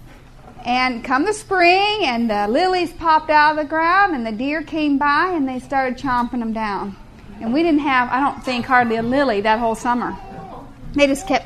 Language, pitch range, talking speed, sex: English, 250-325 Hz, 205 wpm, female